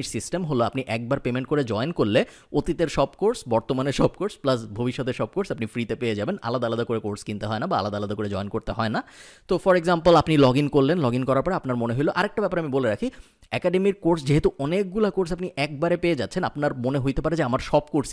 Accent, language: native, Bengali